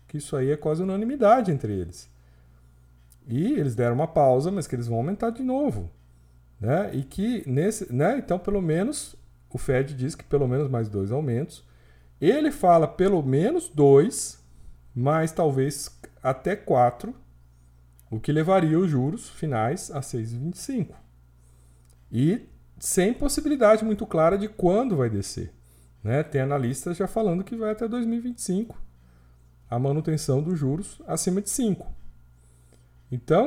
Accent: Brazilian